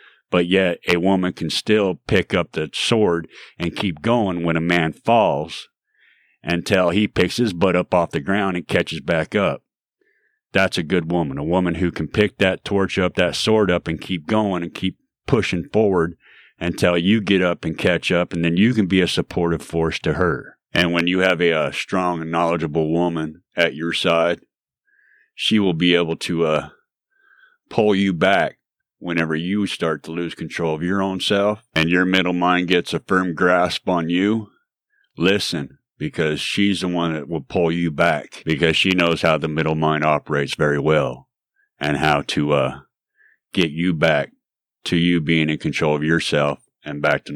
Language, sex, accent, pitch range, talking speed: English, male, American, 80-95 Hz, 190 wpm